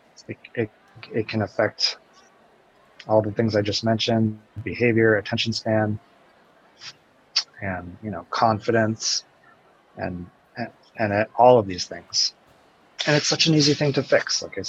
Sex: male